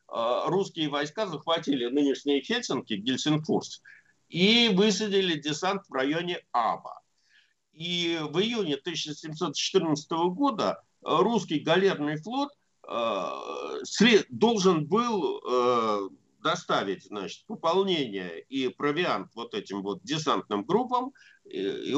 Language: Russian